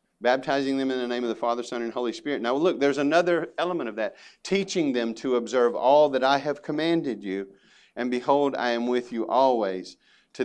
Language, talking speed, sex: English, 210 wpm, male